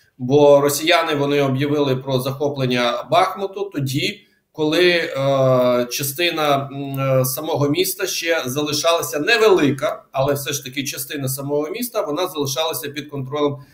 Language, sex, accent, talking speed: Ukrainian, male, native, 120 wpm